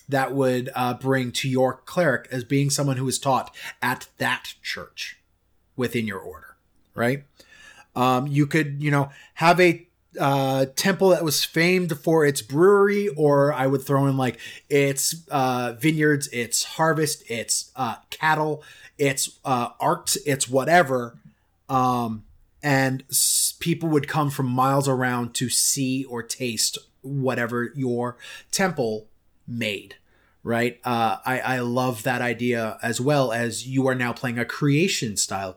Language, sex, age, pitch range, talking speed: English, male, 30-49, 115-140 Hz, 150 wpm